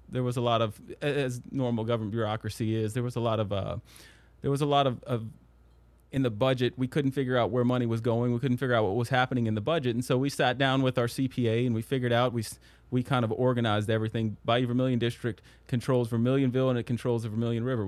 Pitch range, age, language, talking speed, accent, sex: 115-130 Hz, 30-49, English, 240 wpm, American, male